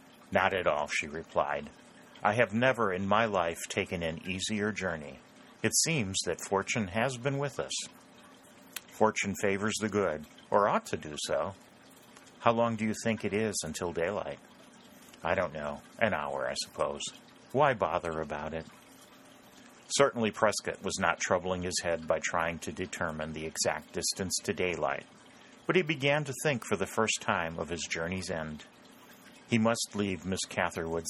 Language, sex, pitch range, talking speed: English, male, 85-110 Hz, 165 wpm